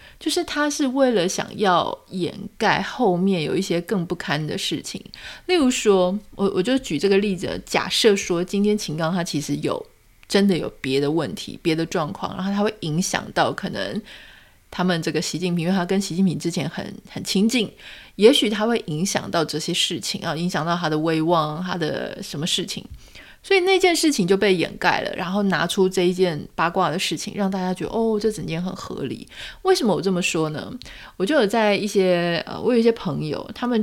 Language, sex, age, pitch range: Chinese, female, 30-49, 170-215 Hz